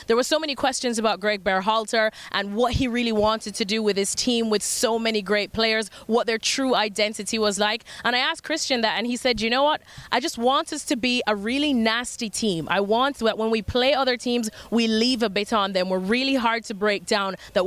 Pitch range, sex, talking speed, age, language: 220-255 Hz, female, 240 wpm, 20-39, English